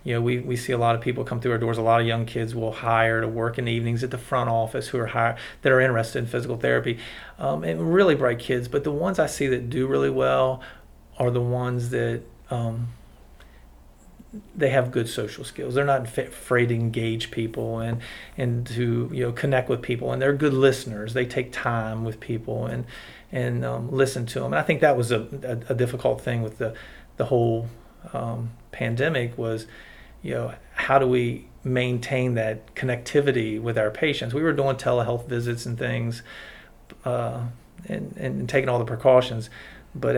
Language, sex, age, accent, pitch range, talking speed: English, male, 40-59, American, 115-125 Hz, 200 wpm